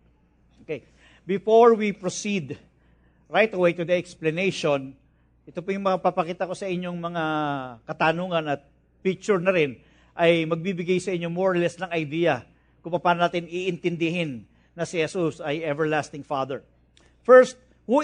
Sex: male